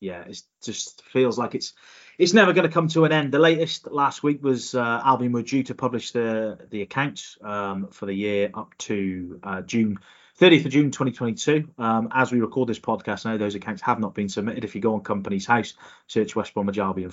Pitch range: 100-125 Hz